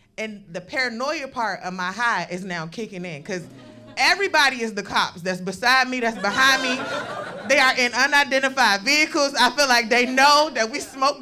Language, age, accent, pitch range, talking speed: English, 20-39, American, 230-360 Hz, 185 wpm